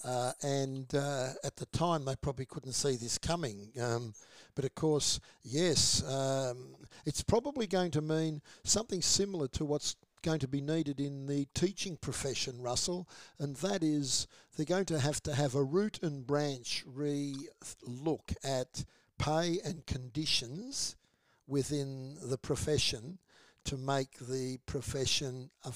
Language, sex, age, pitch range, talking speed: English, male, 60-79, 130-155 Hz, 145 wpm